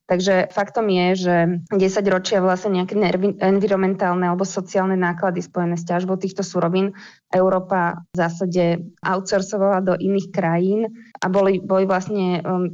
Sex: female